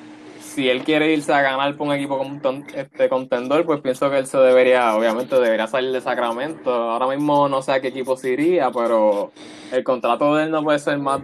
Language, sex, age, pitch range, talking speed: Spanish, male, 20-39, 125-160 Hz, 220 wpm